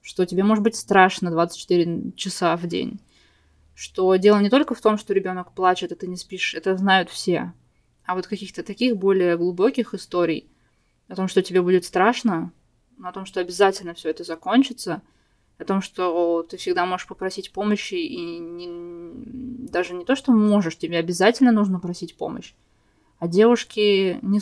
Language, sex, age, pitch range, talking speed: Russian, female, 20-39, 170-215 Hz, 165 wpm